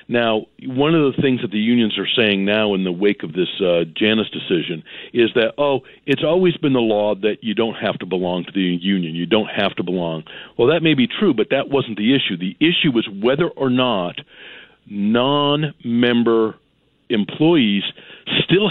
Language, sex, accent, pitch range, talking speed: English, male, American, 105-145 Hz, 190 wpm